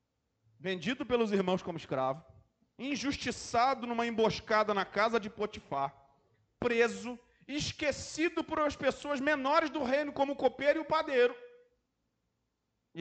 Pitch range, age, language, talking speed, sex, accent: 160-230 Hz, 40-59, Portuguese, 125 wpm, male, Brazilian